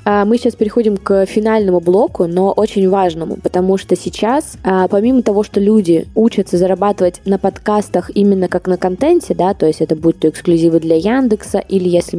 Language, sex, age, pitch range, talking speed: Russian, female, 20-39, 175-210 Hz, 165 wpm